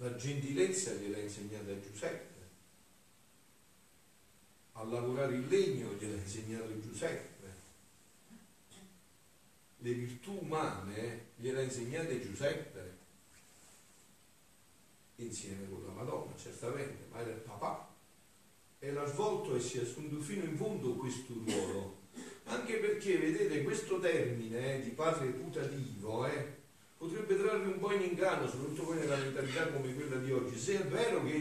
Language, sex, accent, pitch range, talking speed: Italian, male, native, 115-170 Hz, 135 wpm